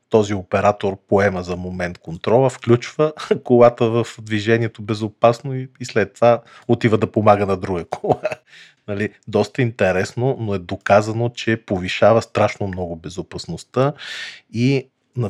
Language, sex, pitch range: Bulgarian, male, 90-115 Hz